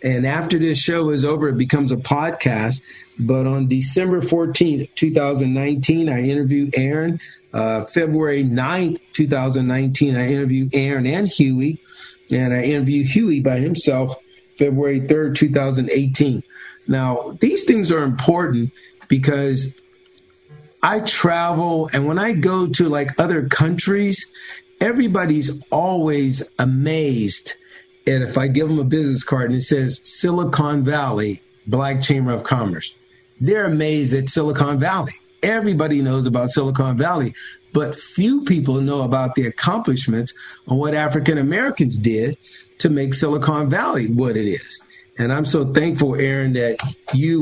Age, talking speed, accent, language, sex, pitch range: 50-69, 135 wpm, American, English, male, 130-160 Hz